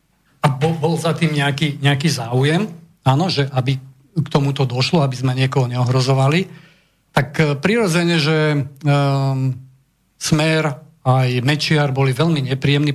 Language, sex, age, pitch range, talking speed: Slovak, male, 40-59, 135-160 Hz, 125 wpm